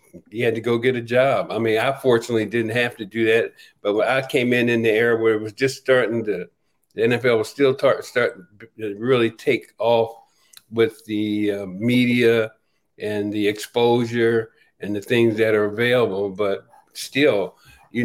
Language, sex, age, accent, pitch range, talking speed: English, male, 50-69, American, 110-130 Hz, 185 wpm